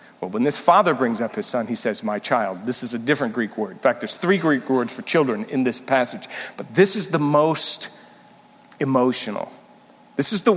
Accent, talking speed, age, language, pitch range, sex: American, 215 wpm, 50-69, English, 125-205 Hz, male